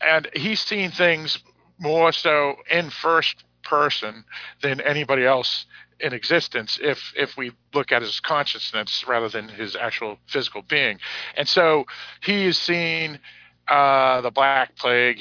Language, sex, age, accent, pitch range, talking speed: English, male, 50-69, American, 125-155 Hz, 140 wpm